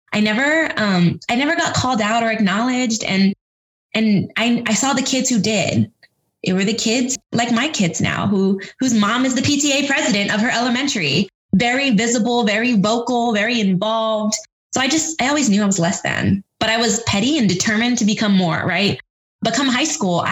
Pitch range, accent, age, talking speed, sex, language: 190-240 Hz, American, 20-39, 200 wpm, female, English